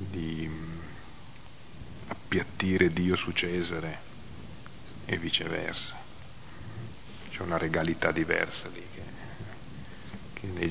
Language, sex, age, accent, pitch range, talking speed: Italian, male, 40-59, native, 90-95 Hz, 85 wpm